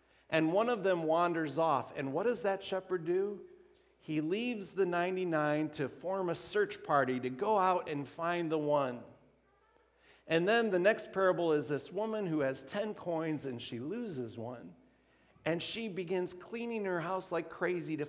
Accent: American